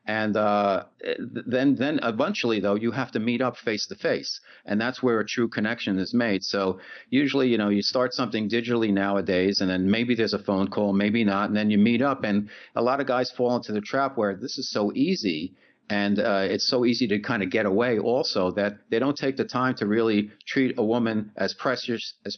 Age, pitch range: 50-69, 105-135 Hz